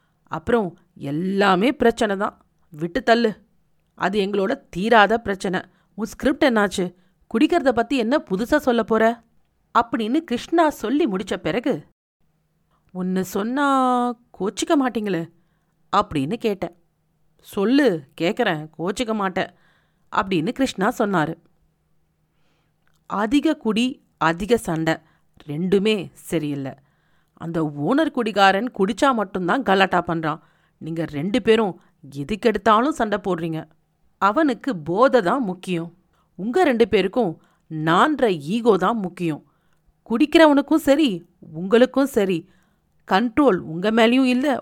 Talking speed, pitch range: 100 wpm, 170-240 Hz